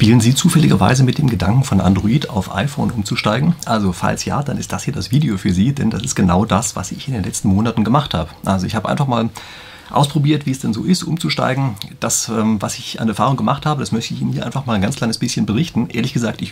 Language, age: German, 40-59